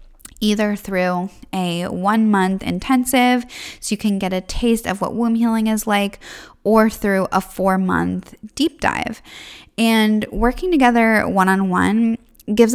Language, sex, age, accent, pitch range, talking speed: English, female, 20-39, American, 180-225 Hz, 140 wpm